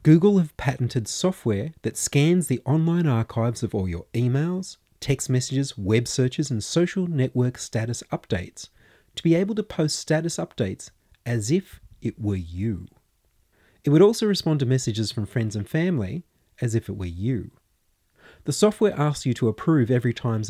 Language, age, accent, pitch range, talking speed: English, 30-49, Australian, 110-160 Hz, 165 wpm